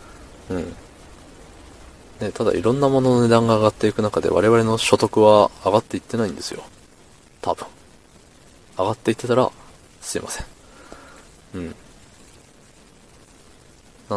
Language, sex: Japanese, male